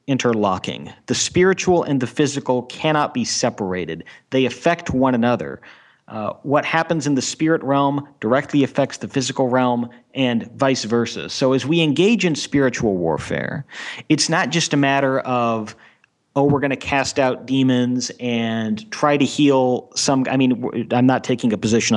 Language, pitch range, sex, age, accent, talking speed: English, 115-145 Hz, male, 40-59, American, 165 wpm